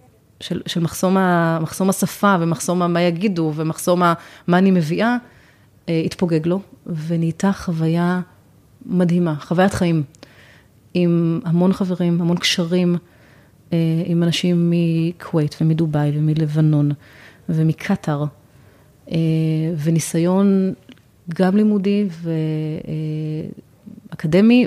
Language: Hebrew